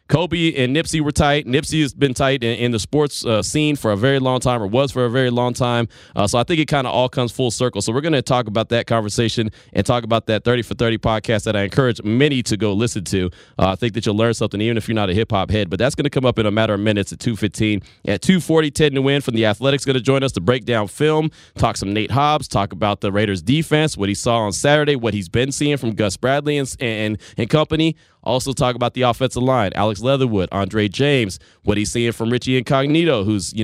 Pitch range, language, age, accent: 105-135 Hz, English, 20-39, American